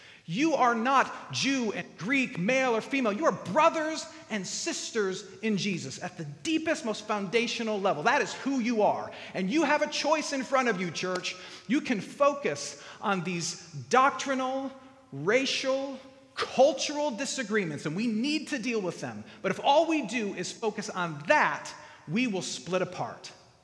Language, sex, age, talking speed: English, male, 40-59, 170 wpm